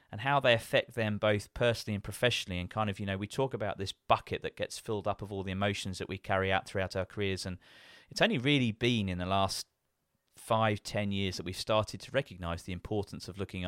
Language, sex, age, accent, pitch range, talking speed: English, male, 30-49, British, 95-115 Hz, 235 wpm